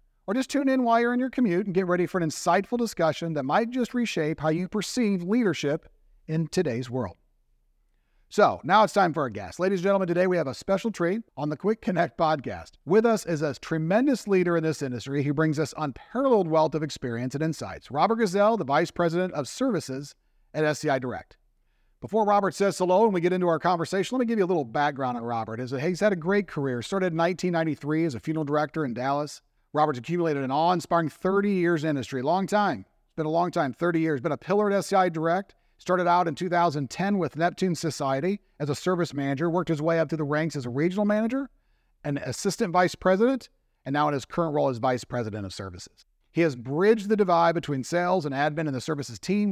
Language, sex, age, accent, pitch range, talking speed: English, male, 50-69, American, 140-190 Hz, 220 wpm